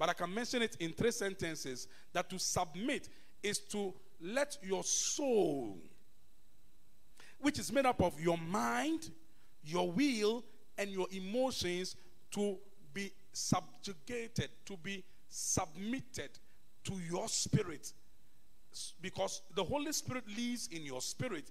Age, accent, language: 40-59, Nigerian, English